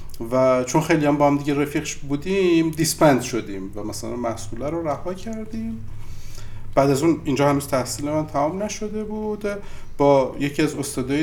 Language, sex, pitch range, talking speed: Persian, male, 115-150 Hz, 165 wpm